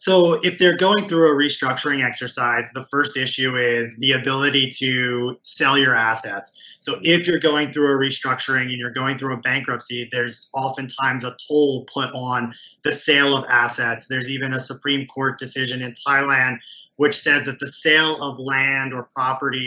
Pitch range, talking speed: 125-145 Hz, 175 wpm